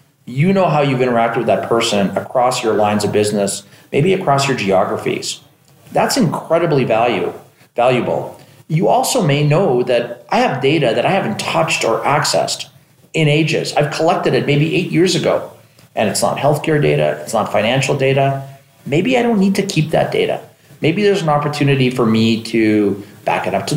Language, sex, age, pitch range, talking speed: English, male, 40-59, 115-165 Hz, 180 wpm